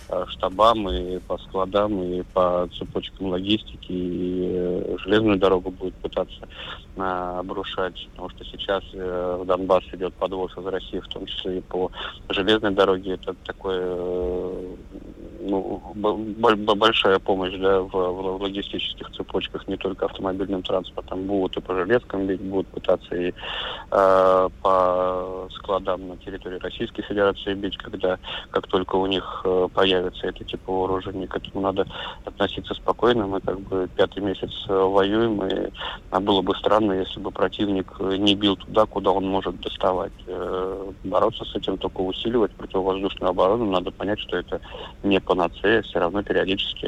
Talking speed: 145 wpm